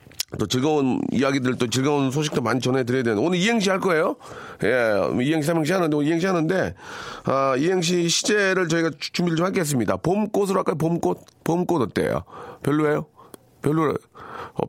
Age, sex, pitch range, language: 40-59, male, 110-160 Hz, Korean